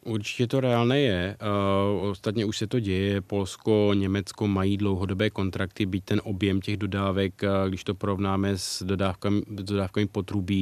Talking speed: 145 wpm